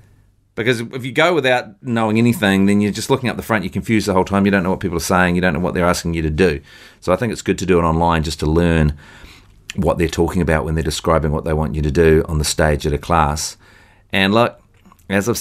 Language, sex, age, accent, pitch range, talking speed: English, male, 40-59, Australian, 85-120 Hz, 275 wpm